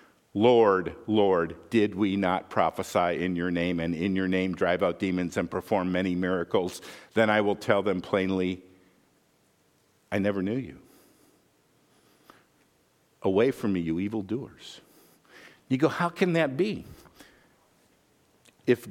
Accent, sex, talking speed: American, male, 135 wpm